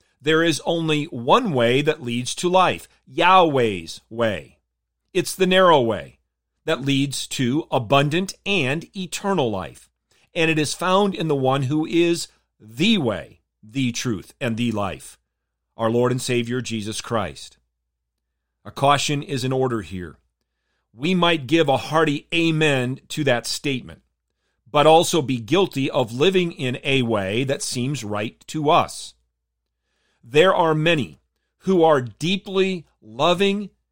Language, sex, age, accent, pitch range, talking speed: English, male, 40-59, American, 110-160 Hz, 140 wpm